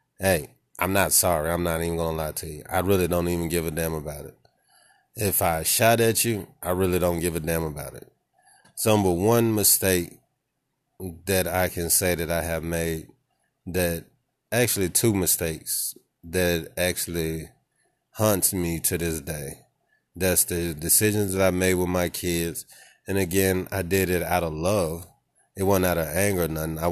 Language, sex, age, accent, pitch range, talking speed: English, male, 30-49, American, 85-95 Hz, 185 wpm